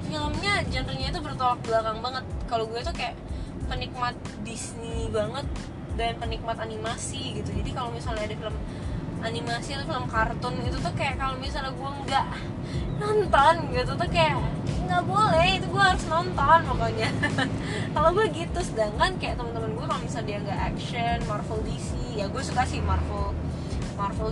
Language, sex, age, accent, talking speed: Indonesian, female, 20-39, native, 160 wpm